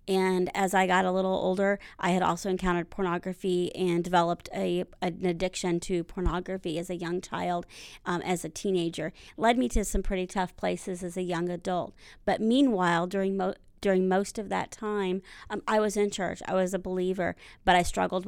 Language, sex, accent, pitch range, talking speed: English, female, American, 175-195 Hz, 195 wpm